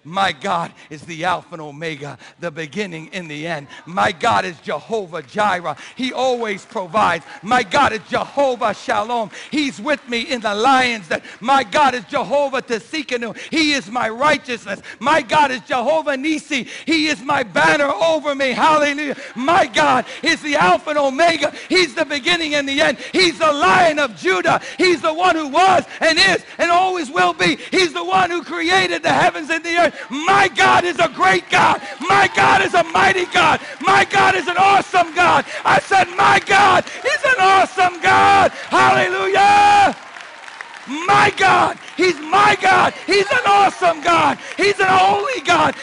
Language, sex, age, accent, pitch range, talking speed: English, male, 60-79, American, 250-360 Hz, 175 wpm